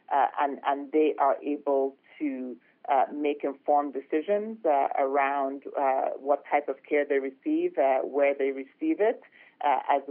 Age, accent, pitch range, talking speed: 40-59, American, 140-170 Hz, 160 wpm